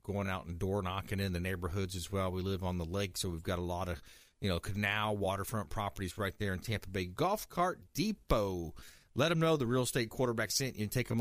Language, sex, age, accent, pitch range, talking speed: English, male, 40-59, American, 95-125 Hz, 245 wpm